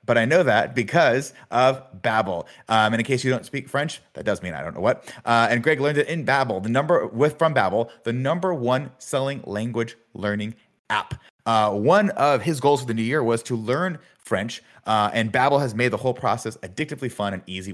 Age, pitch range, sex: 30-49, 100-135 Hz, male